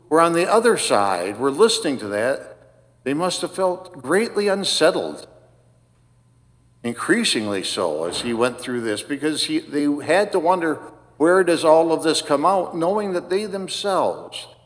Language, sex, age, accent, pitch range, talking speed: English, male, 60-79, American, 120-170 Hz, 155 wpm